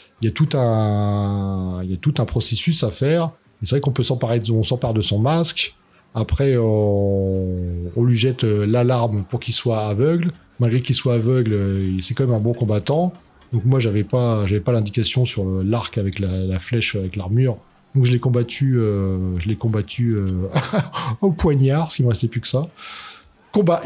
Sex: male